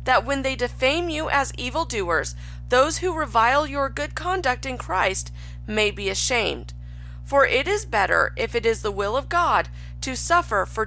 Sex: female